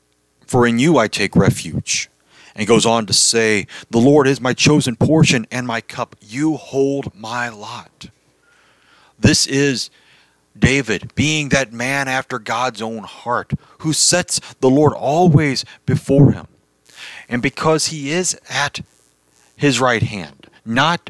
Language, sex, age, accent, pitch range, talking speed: English, male, 40-59, American, 110-145 Hz, 140 wpm